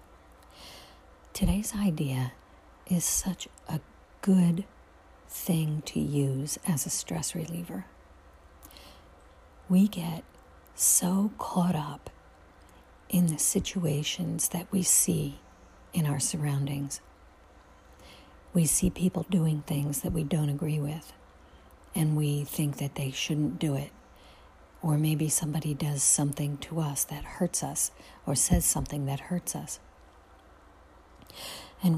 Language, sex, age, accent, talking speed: English, female, 50-69, American, 115 wpm